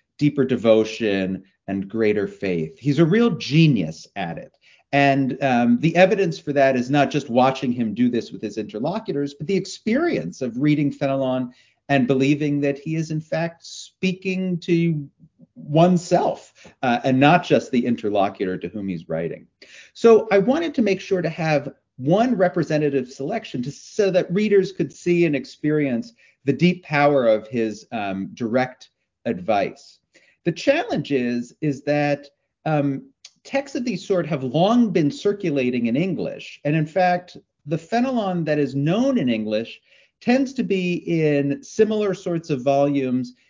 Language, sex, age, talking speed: English, male, 40-59, 155 wpm